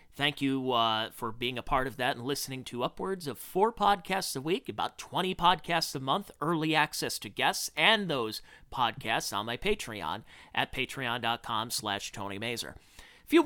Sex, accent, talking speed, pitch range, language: male, American, 180 wpm, 120-175 Hz, English